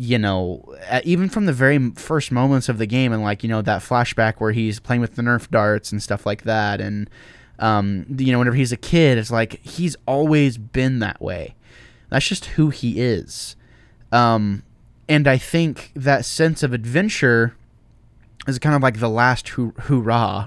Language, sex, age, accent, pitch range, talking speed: English, male, 10-29, American, 110-150 Hz, 185 wpm